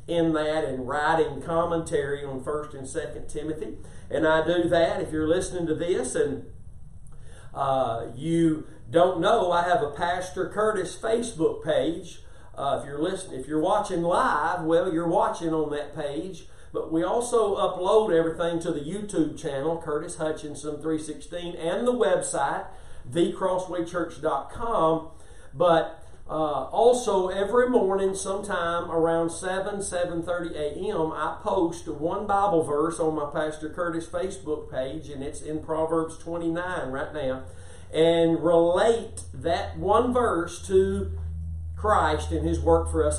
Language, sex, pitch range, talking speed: English, male, 150-180 Hz, 140 wpm